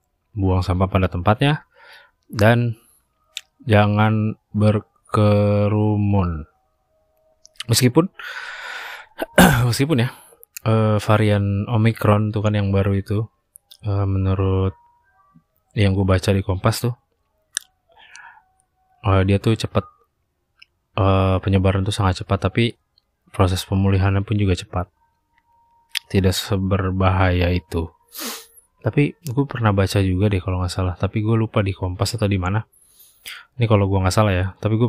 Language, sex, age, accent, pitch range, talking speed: Indonesian, male, 20-39, native, 95-110 Hz, 110 wpm